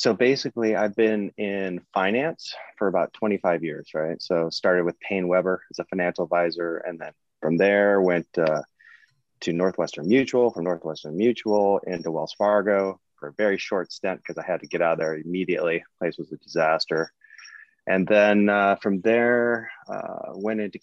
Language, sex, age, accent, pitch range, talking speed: English, male, 20-39, American, 90-115 Hz, 175 wpm